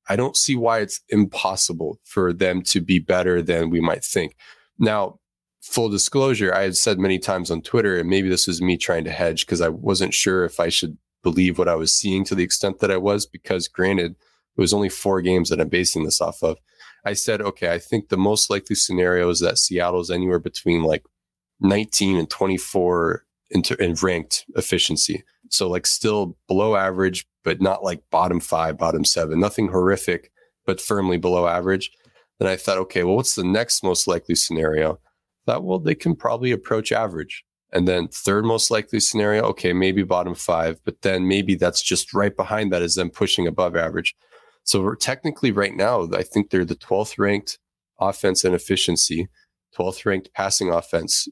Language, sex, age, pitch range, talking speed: English, male, 20-39, 90-105 Hz, 190 wpm